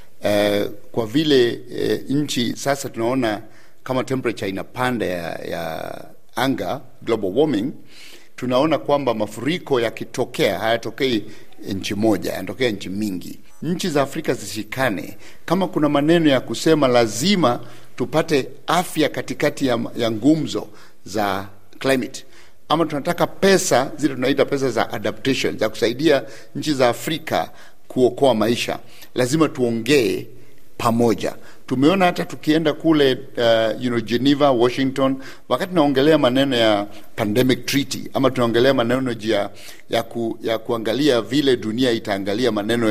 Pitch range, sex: 110-145 Hz, male